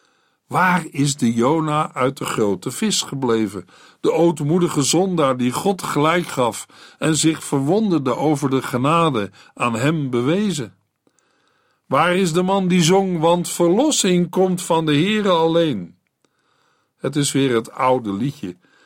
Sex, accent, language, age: male, Dutch, Dutch, 50-69